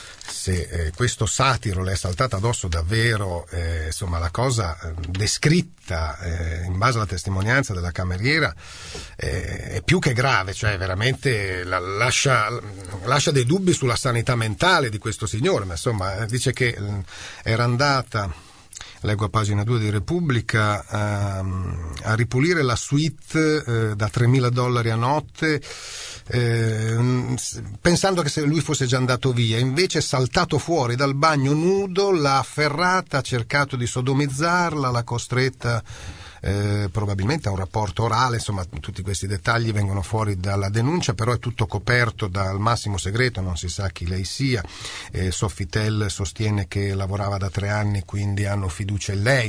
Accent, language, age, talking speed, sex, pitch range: native, Italian, 40-59, 155 wpm, male, 100-130 Hz